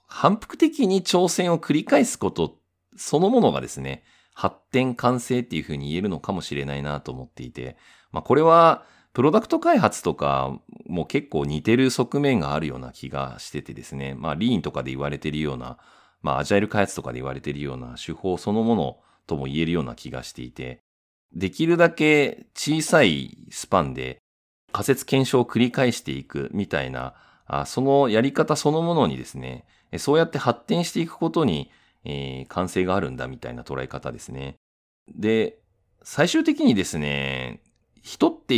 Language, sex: Japanese, male